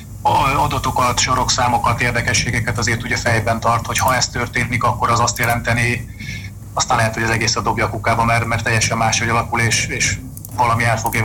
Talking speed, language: 175 wpm, Hungarian